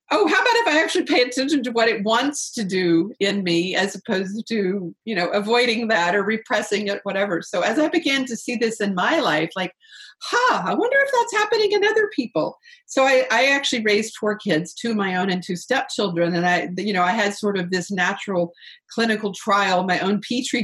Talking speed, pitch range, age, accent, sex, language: 225 wpm, 180-230 Hz, 40-59, American, female, English